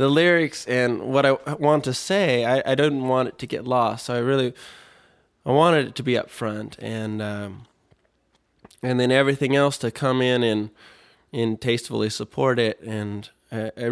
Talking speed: 185 wpm